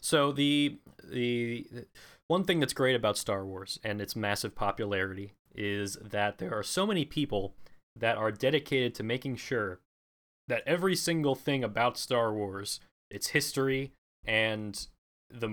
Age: 20-39